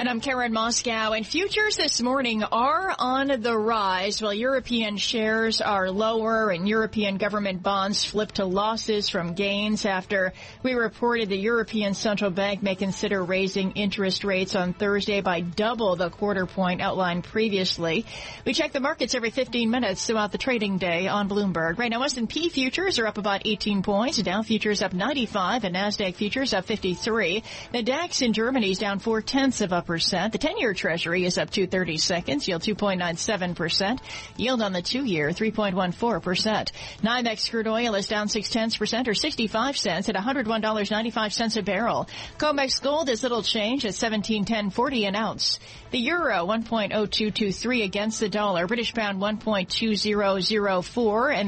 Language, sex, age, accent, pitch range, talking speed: English, female, 40-59, American, 195-235 Hz, 190 wpm